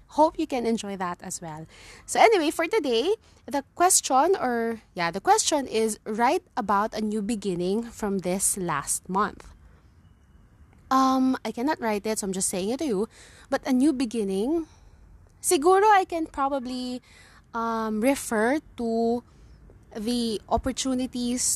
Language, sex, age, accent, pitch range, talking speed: English, female, 20-39, Filipino, 200-260 Hz, 145 wpm